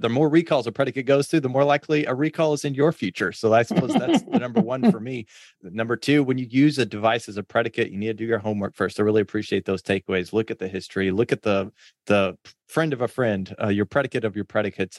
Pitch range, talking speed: 110-145 Hz, 260 wpm